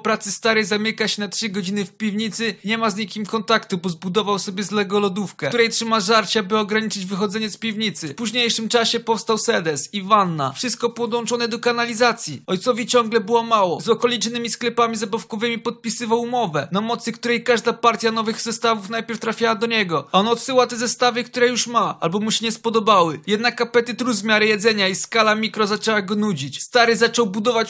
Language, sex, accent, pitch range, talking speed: Polish, male, native, 220-255 Hz, 185 wpm